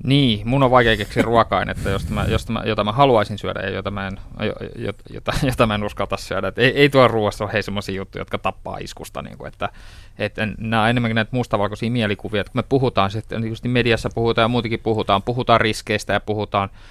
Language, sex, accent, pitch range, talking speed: Finnish, male, native, 105-135 Hz, 200 wpm